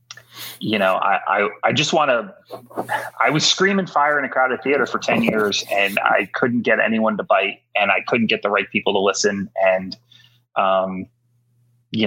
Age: 30-49